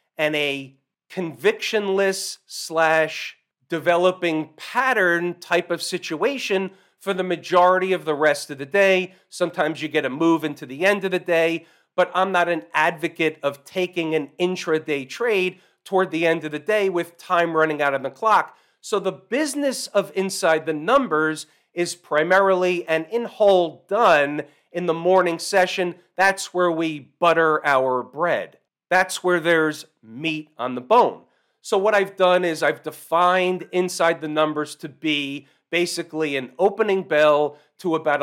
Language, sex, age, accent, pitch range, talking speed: English, male, 40-59, American, 150-180 Hz, 155 wpm